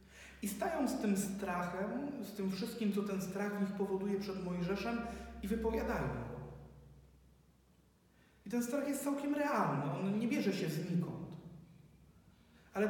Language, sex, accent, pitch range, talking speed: Polish, male, native, 165-220 Hz, 135 wpm